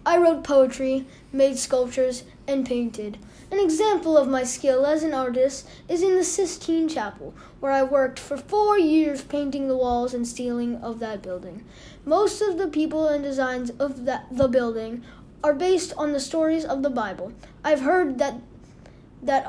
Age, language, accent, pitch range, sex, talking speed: 20-39, English, American, 260-320 Hz, female, 170 wpm